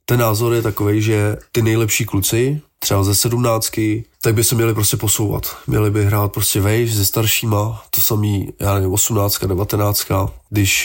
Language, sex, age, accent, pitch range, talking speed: Czech, male, 20-39, native, 100-110 Hz, 170 wpm